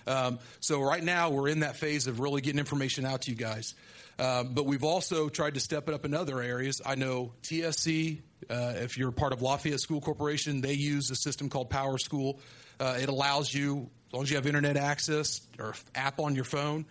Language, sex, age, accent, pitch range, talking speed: English, male, 40-59, American, 125-155 Hz, 215 wpm